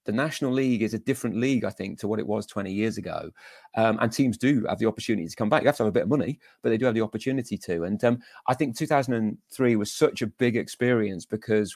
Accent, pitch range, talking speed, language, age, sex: British, 105-130 Hz, 265 wpm, English, 30-49, male